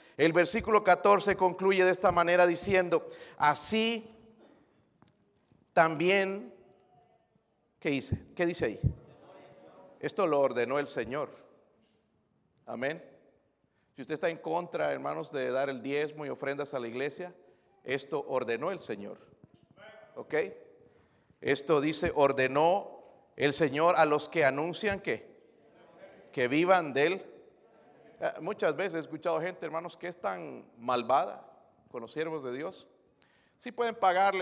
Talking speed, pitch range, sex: 125 wpm, 155-195 Hz, male